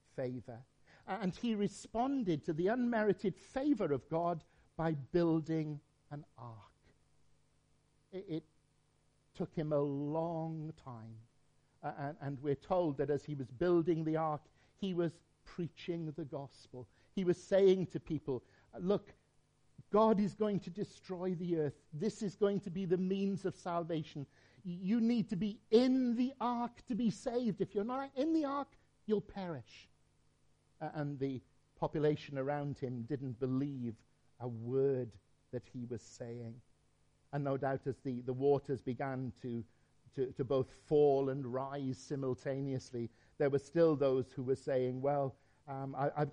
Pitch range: 135-175 Hz